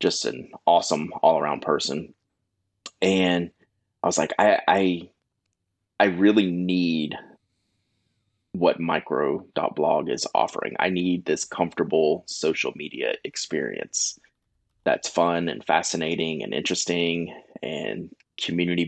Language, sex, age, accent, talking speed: English, male, 20-39, American, 110 wpm